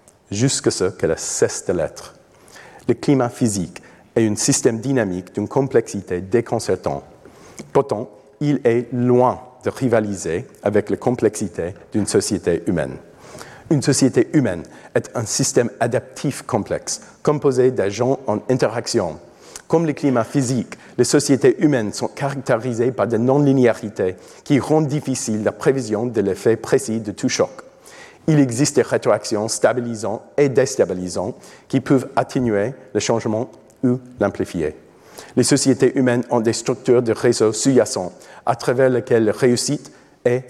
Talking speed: 135 wpm